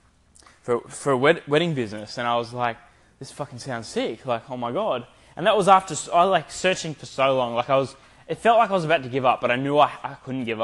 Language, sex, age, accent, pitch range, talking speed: English, male, 10-29, Australian, 120-165 Hz, 275 wpm